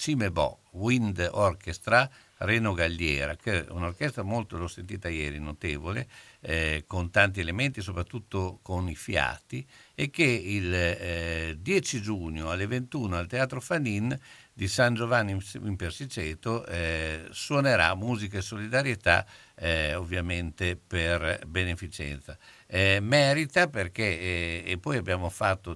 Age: 60-79